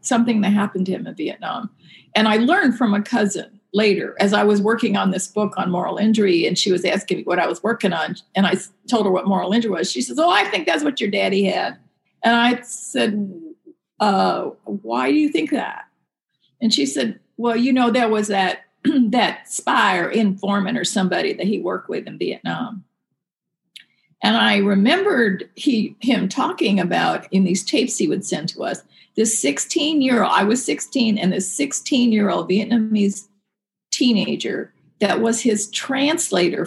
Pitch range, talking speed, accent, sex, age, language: 190-230 Hz, 180 wpm, American, female, 50-69, English